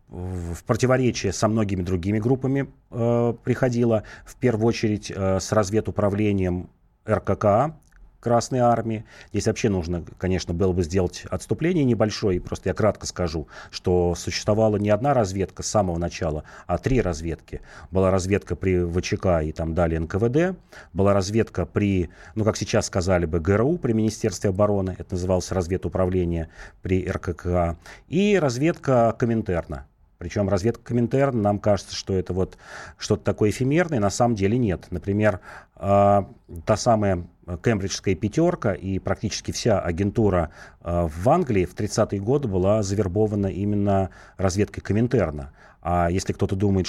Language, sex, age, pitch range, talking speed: Russian, male, 30-49, 90-115 Hz, 135 wpm